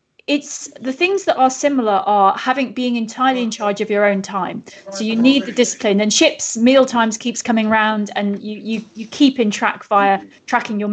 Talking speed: 210 wpm